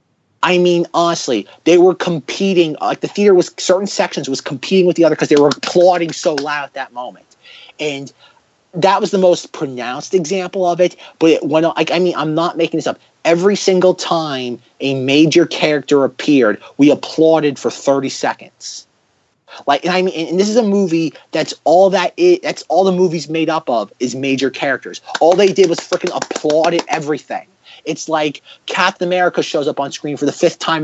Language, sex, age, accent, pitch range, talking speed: English, male, 30-49, American, 140-180 Hz, 195 wpm